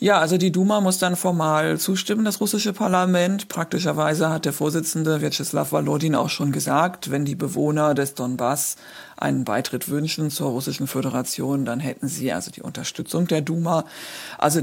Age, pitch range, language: 50-69, 145-175 Hz, German